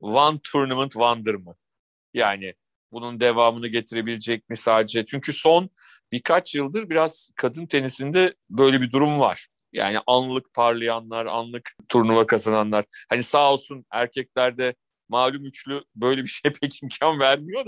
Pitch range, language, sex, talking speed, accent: 110-135 Hz, Turkish, male, 130 wpm, native